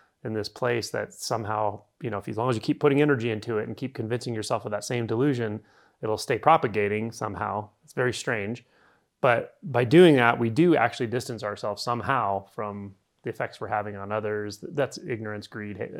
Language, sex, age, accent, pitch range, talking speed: English, male, 30-49, American, 105-130 Hz, 200 wpm